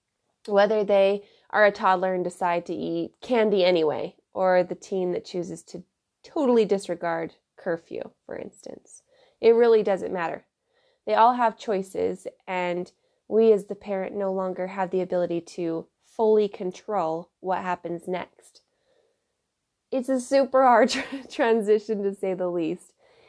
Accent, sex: American, female